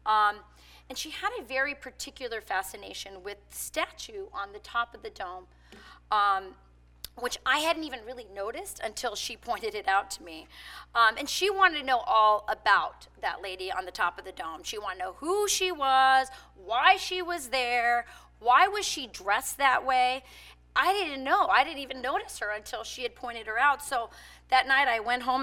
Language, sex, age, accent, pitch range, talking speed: English, female, 30-49, American, 220-355 Hz, 200 wpm